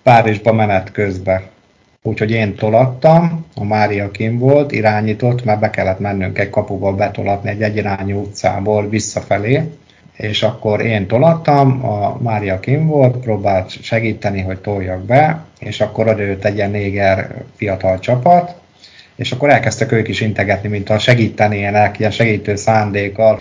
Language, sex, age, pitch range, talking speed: Hungarian, male, 50-69, 100-125 Hz, 140 wpm